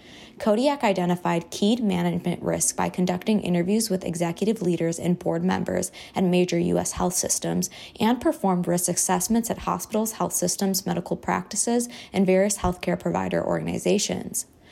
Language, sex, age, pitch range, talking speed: English, female, 20-39, 170-195 Hz, 140 wpm